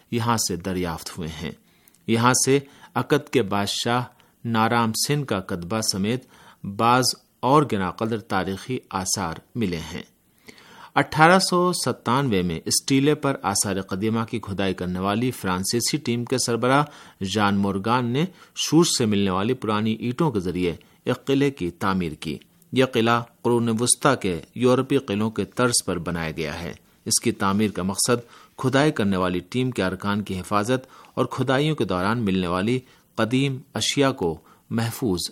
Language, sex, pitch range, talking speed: Urdu, male, 95-130 Hz, 150 wpm